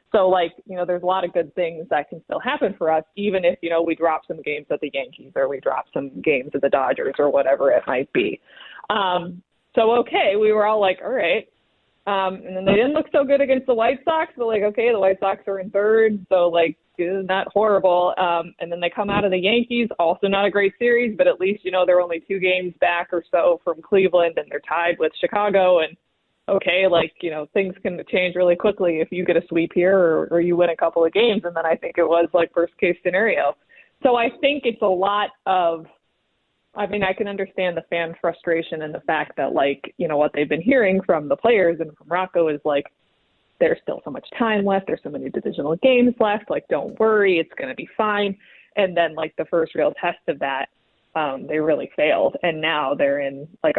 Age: 20-39